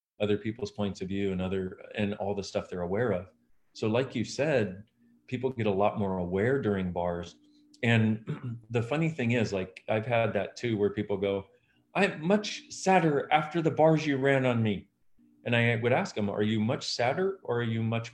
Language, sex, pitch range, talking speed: English, male, 100-135 Hz, 205 wpm